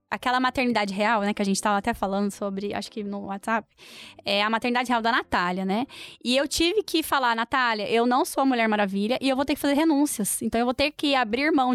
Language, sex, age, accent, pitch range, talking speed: Portuguese, female, 10-29, Brazilian, 235-300 Hz, 245 wpm